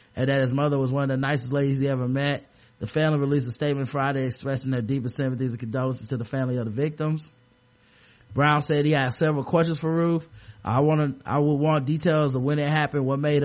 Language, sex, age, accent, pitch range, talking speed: English, male, 30-49, American, 130-150 Hz, 230 wpm